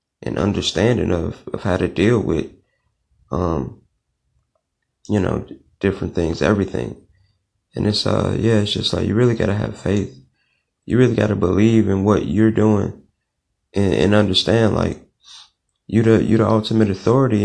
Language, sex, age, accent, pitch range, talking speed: English, male, 30-49, American, 95-110 Hz, 155 wpm